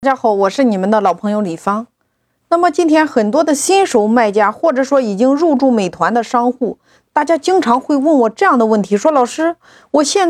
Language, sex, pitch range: Chinese, female, 225-300 Hz